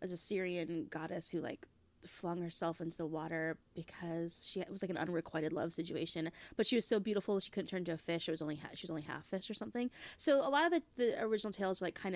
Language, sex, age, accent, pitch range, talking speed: English, female, 20-39, American, 170-225 Hz, 260 wpm